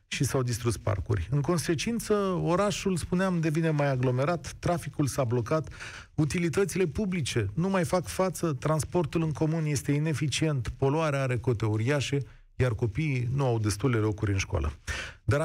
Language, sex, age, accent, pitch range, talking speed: Romanian, male, 40-59, native, 115-165 Hz, 150 wpm